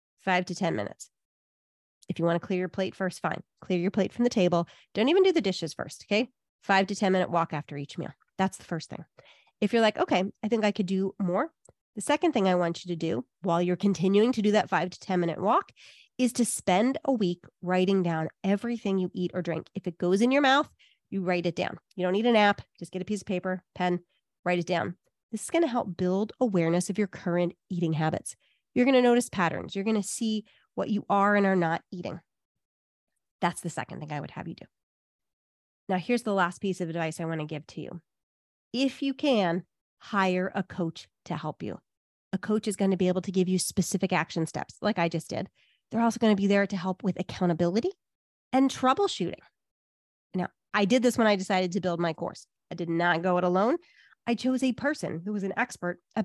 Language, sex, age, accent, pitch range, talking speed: English, female, 30-49, American, 175-215 Hz, 235 wpm